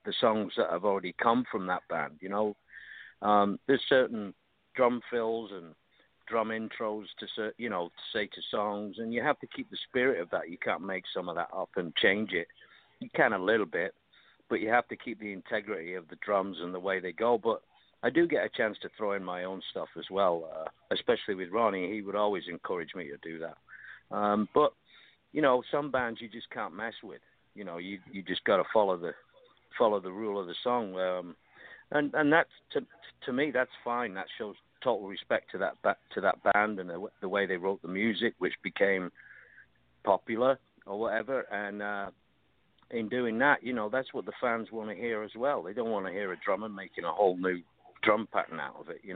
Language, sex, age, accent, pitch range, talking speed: English, male, 50-69, British, 95-120 Hz, 220 wpm